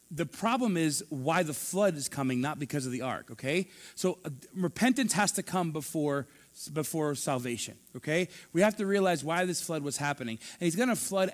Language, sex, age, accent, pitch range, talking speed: English, male, 30-49, American, 145-195 Hz, 200 wpm